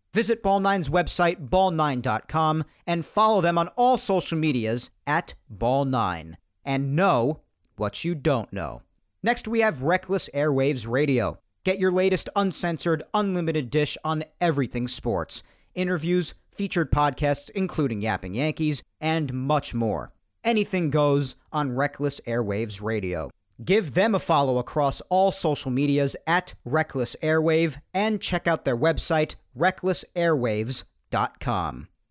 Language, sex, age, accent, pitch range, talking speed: English, male, 40-59, American, 130-175 Hz, 125 wpm